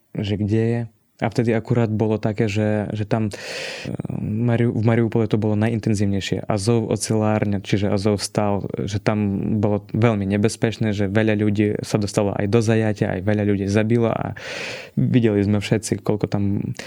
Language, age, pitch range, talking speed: Slovak, 20-39, 105-115 Hz, 160 wpm